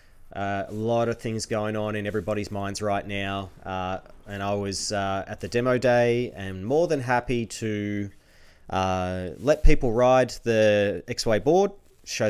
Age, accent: 20-39, Australian